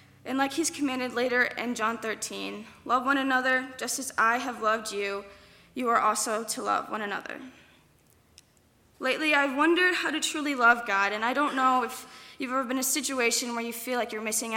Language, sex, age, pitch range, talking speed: English, female, 10-29, 220-275 Hz, 200 wpm